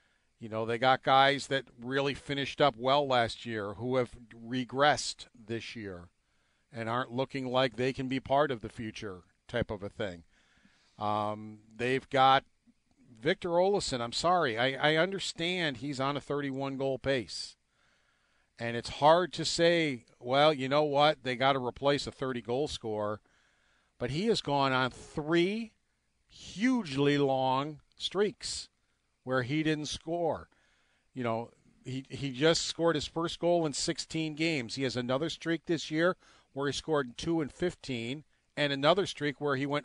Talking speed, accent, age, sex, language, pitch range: 160 wpm, American, 50-69, male, English, 120-155 Hz